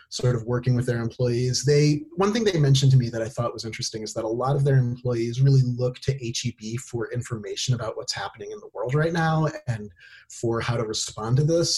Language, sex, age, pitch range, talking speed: English, male, 30-49, 115-140 Hz, 245 wpm